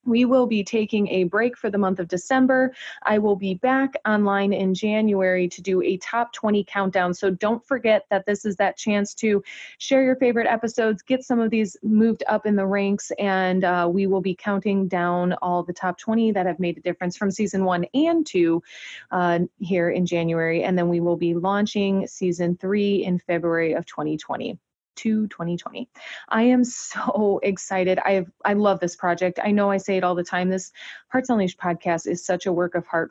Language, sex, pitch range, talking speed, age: English, female, 175-205 Hz, 205 wpm, 30-49